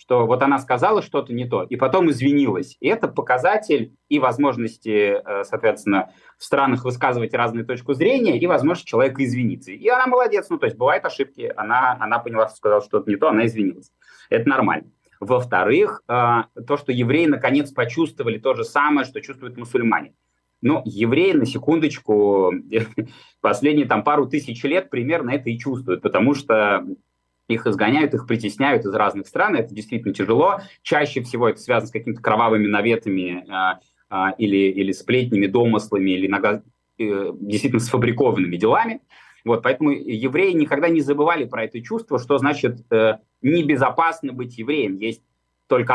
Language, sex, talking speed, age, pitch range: Russian, male, 160 wpm, 30-49, 110-155 Hz